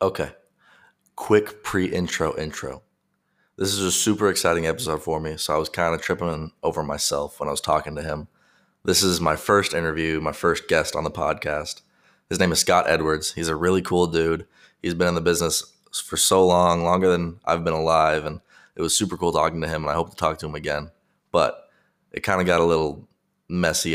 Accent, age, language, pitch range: American, 20-39, English, 80-90 Hz